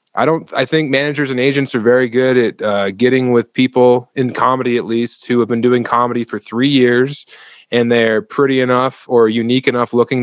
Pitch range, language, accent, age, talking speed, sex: 110-130 Hz, English, American, 20-39, 205 wpm, male